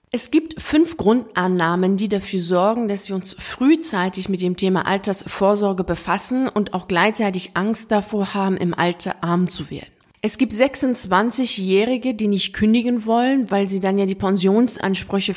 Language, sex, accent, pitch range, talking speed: German, female, German, 185-220 Hz, 155 wpm